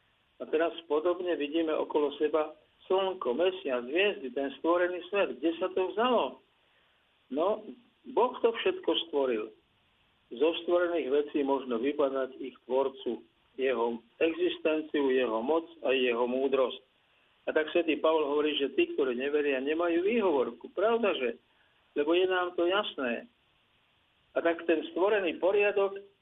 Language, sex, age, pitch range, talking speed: Slovak, male, 50-69, 145-200 Hz, 135 wpm